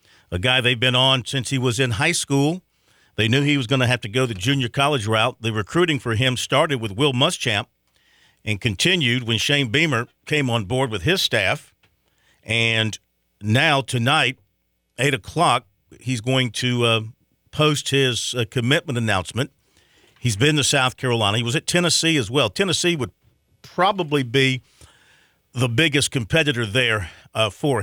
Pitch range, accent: 110-140 Hz, American